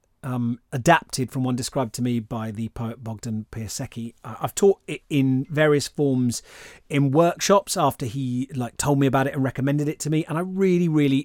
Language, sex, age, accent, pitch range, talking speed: English, male, 30-49, British, 120-150 Hz, 190 wpm